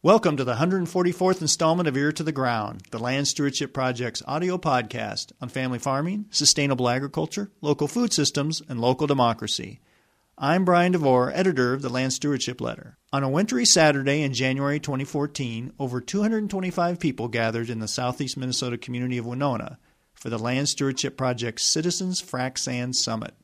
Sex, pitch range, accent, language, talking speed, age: male, 125-170 Hz, American, English, 160 wpm, 40-59